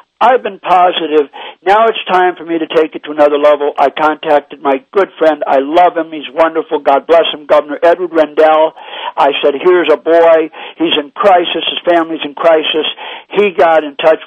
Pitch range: 150-180 Hz